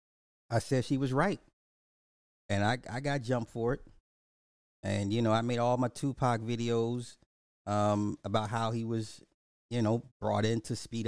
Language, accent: English, American